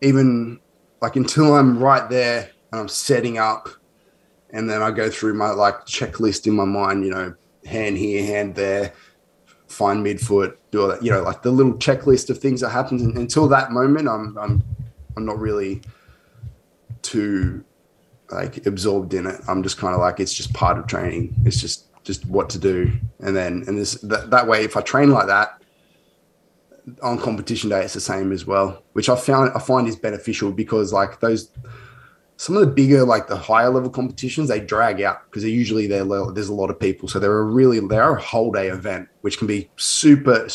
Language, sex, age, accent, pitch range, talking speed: English, male, 20-39, Australian, 100-120 Hz, 205 wpm